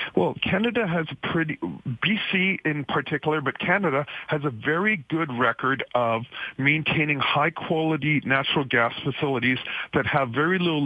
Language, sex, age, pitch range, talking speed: English, male, 40-59, 130-160 Hz, 145 wpm